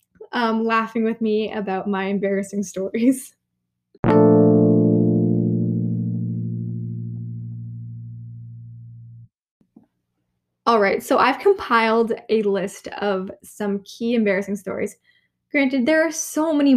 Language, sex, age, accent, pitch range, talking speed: English, female, 10-29, American, 195-260 Hz, 90 wpm